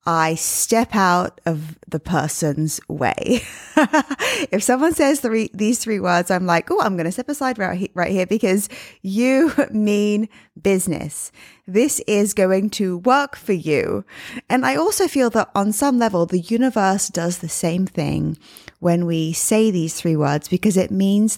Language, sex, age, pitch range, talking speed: English, female, 20-39, 170-230 Hz, 160 wpm